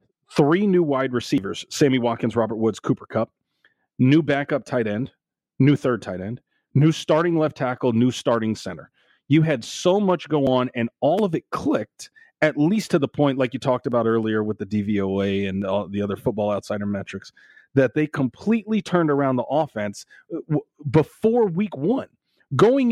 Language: English